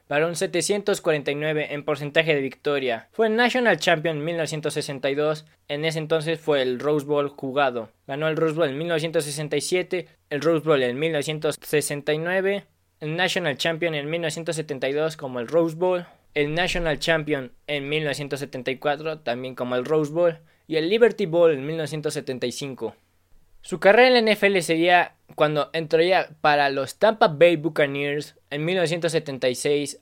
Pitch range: 140-170 Hz